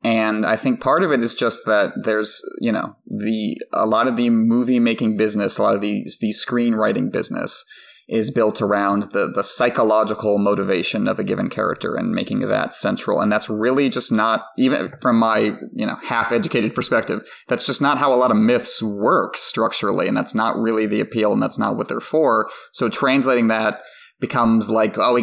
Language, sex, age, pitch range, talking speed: English, male, 20-39, 110-125 Hz, 200 wpm